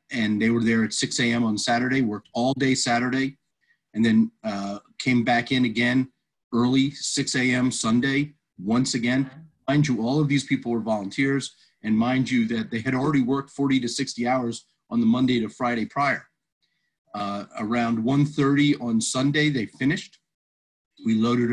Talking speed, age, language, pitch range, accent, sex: 170 wpm, 40-59, English, 115-140 Hz, American, male